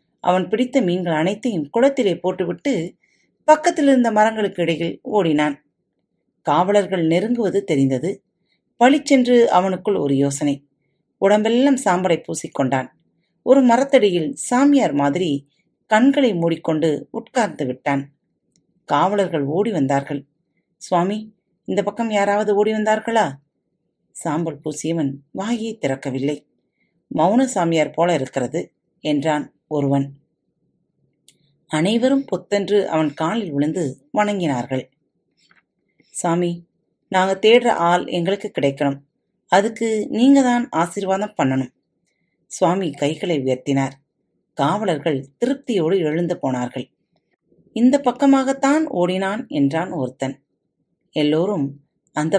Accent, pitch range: native, 145-215 Hz